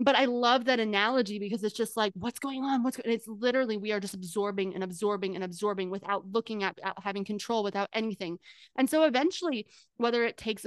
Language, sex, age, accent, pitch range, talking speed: English, female, 20-39, American, 205-255 Hz, 210 wpm